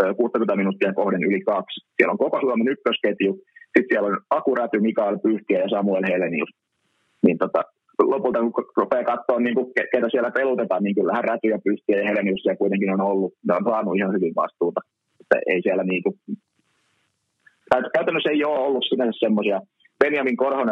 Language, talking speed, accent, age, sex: Finnish, 160 wpm, native, 30-49, male